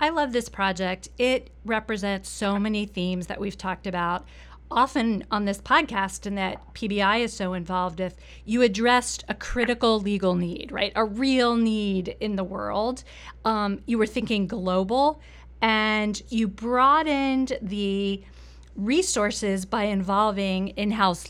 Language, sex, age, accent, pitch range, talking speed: English, female, 40-59, American, 195-230 Hz, 140 wpm